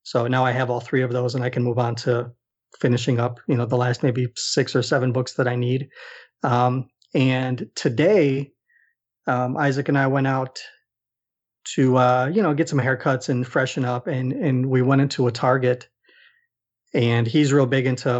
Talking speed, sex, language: 195 wpm, male, English